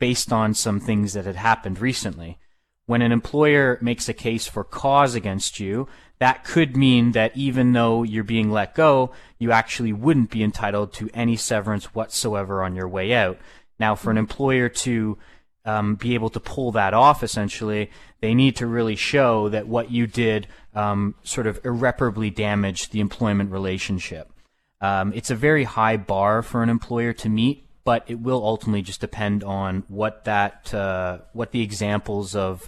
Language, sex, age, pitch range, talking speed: English, male, 20-39, 100-120 Hz, 175 wpm